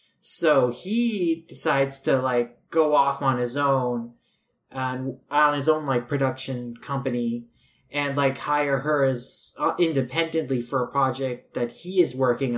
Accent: American